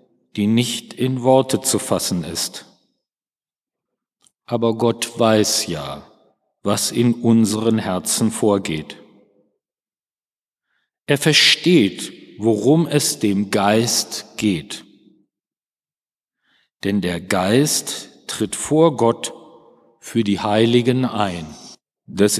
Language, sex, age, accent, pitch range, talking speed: German, male, 50-69, German, 110-145 Hz, 90 wpm